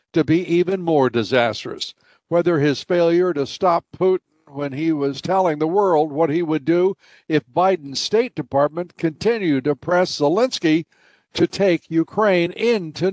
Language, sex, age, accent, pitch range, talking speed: English, male, 60-79, American, 145-185 Hz, 150 wpm